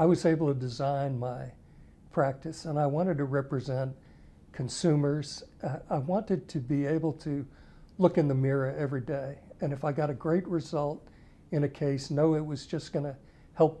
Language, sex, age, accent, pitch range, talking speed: English, male, 60-79, American, 130-155 Hz, 180 wpm